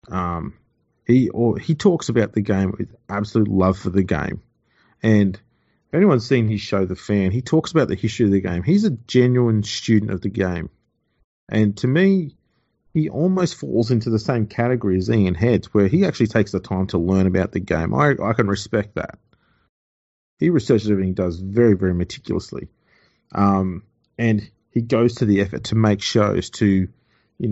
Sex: male